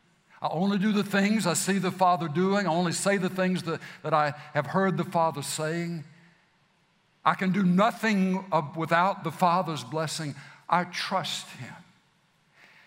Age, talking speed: 60-79, 160 wpm